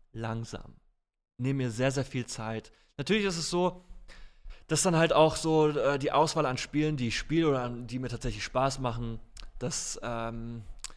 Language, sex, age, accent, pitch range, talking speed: German, male, 20-39, German, 120-170 Hz, 175 wpm